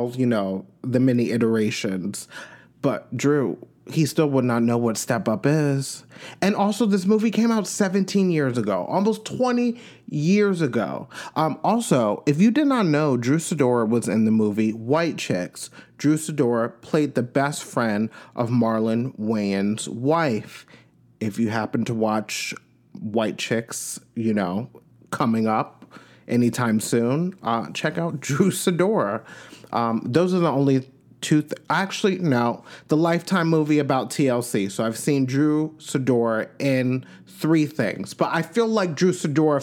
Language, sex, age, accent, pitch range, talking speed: English, male, 30-49, American, 115-170 Hz, 150 wpm